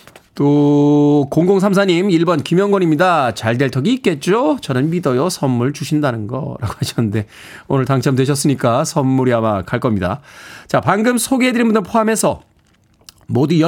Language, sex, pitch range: Korean, male, 135-195 Hz